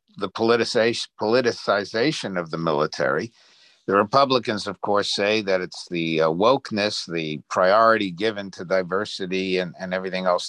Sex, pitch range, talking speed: male, 95-130 Hz, 135 wpm